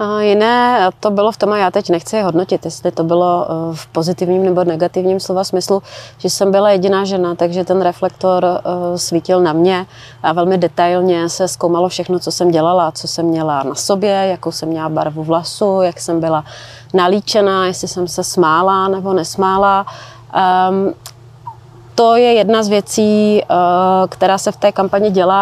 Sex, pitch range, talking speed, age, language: female, 170-190 Hz, 165 wpm, 30-49, Czech